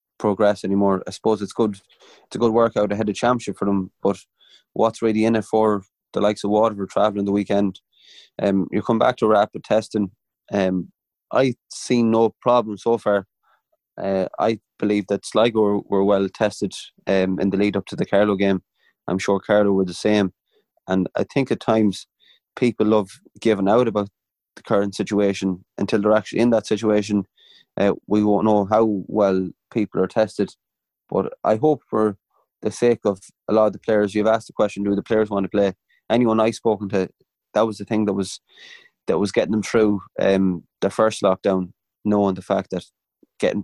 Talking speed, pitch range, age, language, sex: 195 wpm, 95-110 Hz, 20-39, English, male